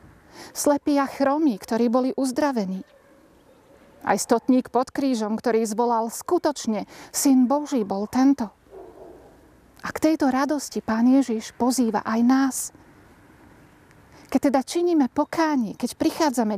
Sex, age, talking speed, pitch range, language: female, 40-59, 115 wpm, 215-275 Hz, Slovak